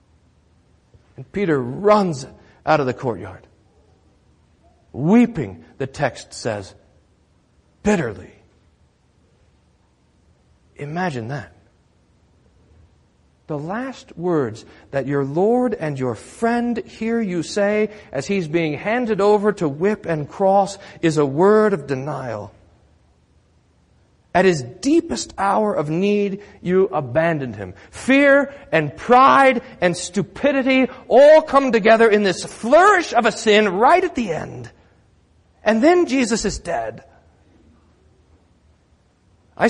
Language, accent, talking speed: English, American, 110 wpm